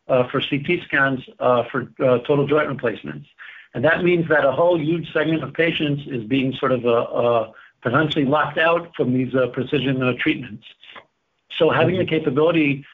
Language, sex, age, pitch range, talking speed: English, male, 50-69, 125-150 Hz, 185 wpm